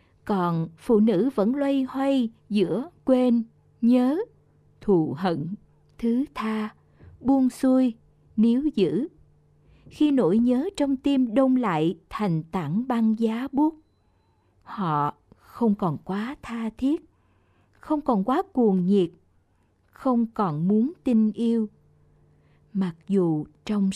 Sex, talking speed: female, 120 wpm